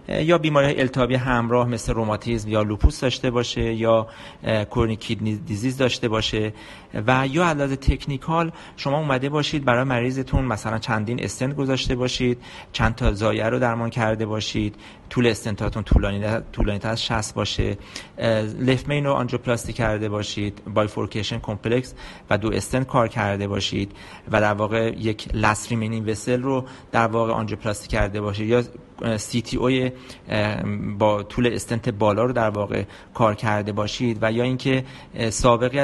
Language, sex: Persian, male